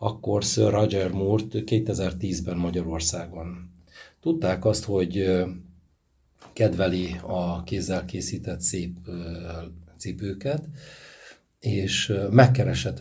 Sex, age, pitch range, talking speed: male, 60-79, 90-105 Hz, 80 wpm